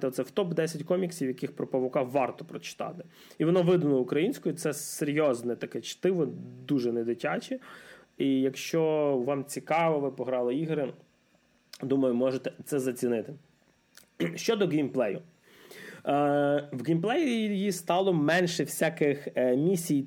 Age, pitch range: 20-39, 130-160 Hz